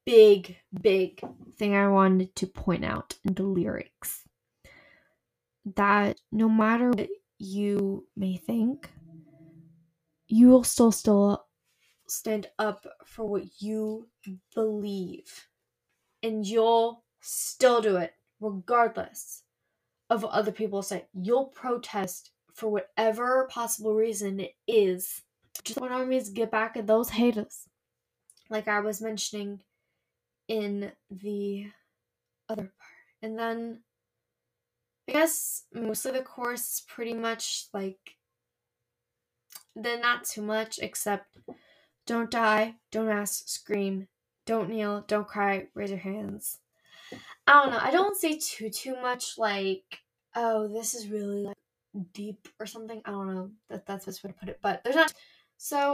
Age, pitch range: 10-29, 195-230 Hz